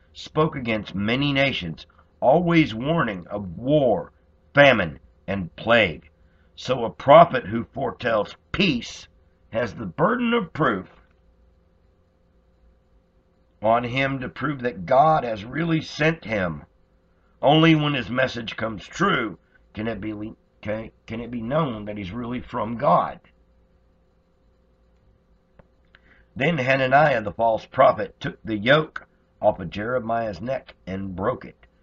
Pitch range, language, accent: 90-120 Hz, English, American